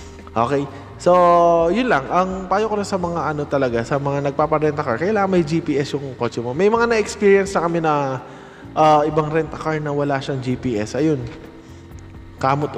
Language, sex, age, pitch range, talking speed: Filipino, male, 20-39, 130-175 Hz, 180 wpm